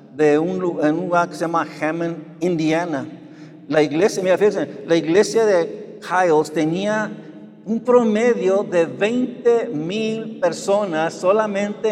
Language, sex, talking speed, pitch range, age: Spanish, male, 120 wpm, 155-215 Hz, 60-79